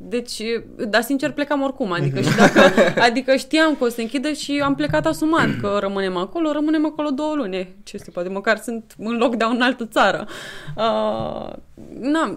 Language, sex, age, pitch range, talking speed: Romanian, female, 20-39, 190-240 Hz, 185 wpm